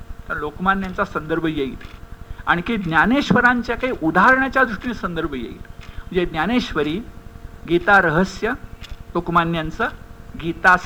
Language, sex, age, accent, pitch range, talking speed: Hindi, male, 60-79, native, 165-225 Hz, 90 wpm